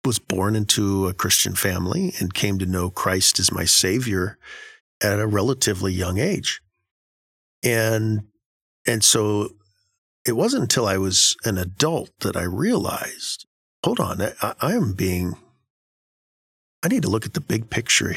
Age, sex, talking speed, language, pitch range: 50-69, male, 150 wpm, English, 90-110 Hz